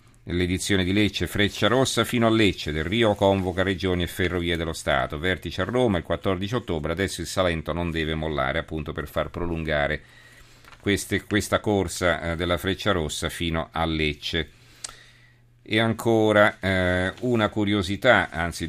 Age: 50-69